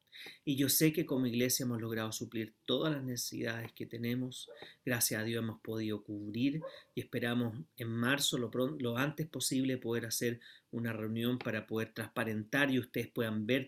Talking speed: 170 wpm